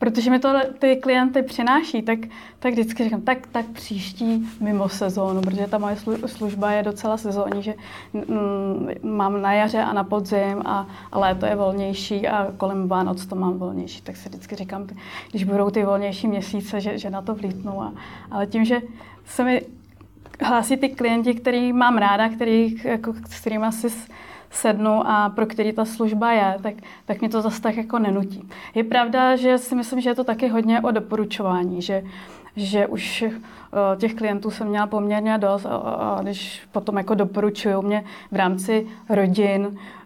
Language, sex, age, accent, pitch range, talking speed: Czech, female, 20-39, native, 200-230 Hz, 175 wpm